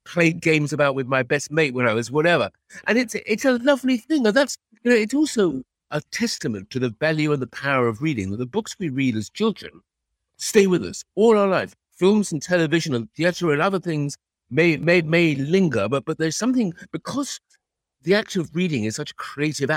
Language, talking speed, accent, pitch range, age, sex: English, 215 wpm, British, 130-200 Hz, 60-79, male